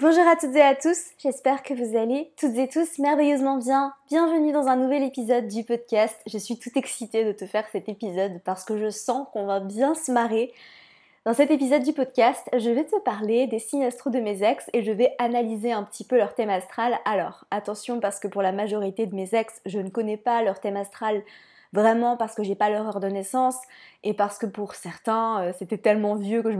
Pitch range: 215-255 Hz